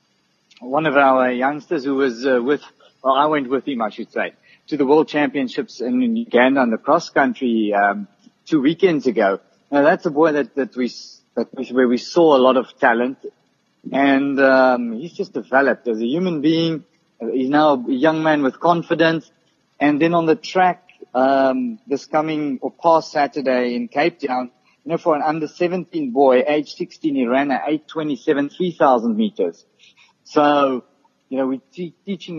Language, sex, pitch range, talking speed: English, male, 130-170 Hz, 175 wpm